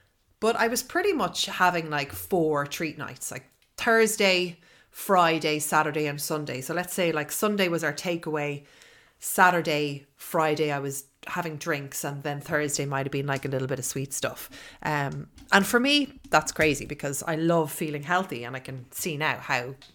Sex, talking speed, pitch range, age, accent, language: female, 180 wpm, 145-185 Hz, 30-49, Irish, English